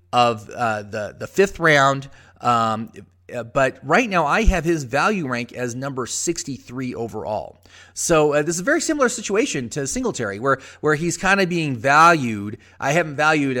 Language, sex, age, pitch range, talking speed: English, male, 30-49, 125-180 Hz, 175 wpm